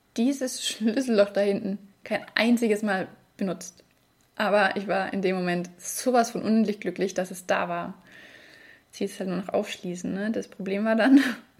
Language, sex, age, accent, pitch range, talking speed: English, female, 20-39, German, 200-230 Hz, 170 wpm